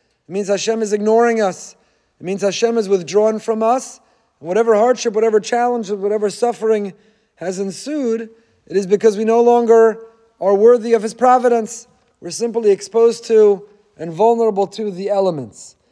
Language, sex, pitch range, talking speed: English, male, 195-235 Hz, 160 wpm